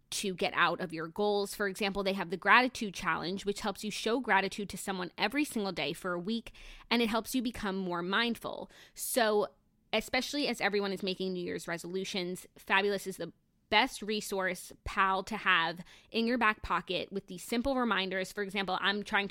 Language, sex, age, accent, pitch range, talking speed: English, female, 20-39, American, 185-225 Hz, 195 wpm